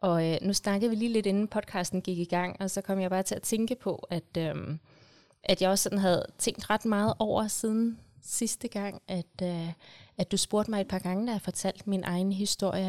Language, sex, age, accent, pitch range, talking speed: Danish, female, 30-49, native, 160-195 Hz, 235 wpm